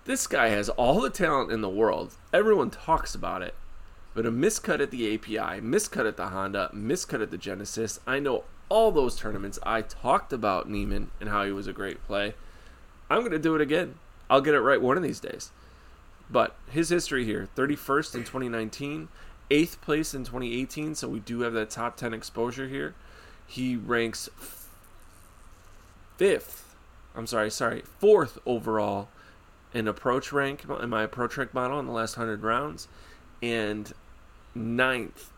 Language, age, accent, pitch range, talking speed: English, 30-49, American, 105-135 Hz, 170 wpm